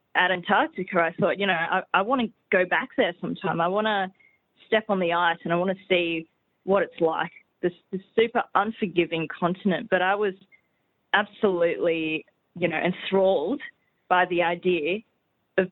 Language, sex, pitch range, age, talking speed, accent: Gujarati, female, 170-210 Hz, 20-39, 170 wpm, Australian